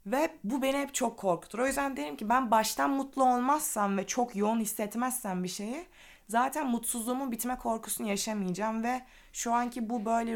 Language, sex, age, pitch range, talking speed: Turkish, female, 30-49, 185-245 Hz, 175 wpm